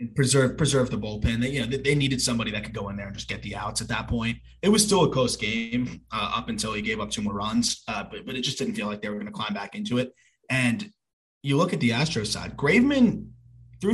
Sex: male